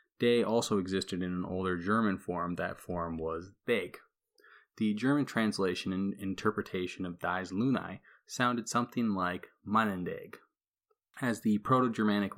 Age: 20-39